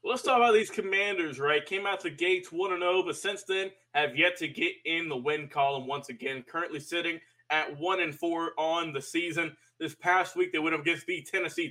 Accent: American